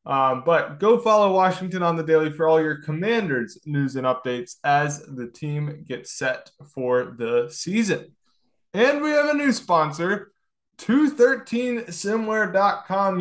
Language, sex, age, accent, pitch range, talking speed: English, male, 20-39, American, 135-185 Hz, 135 wpm